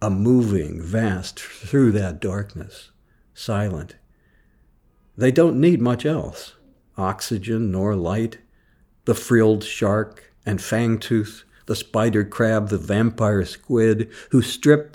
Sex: male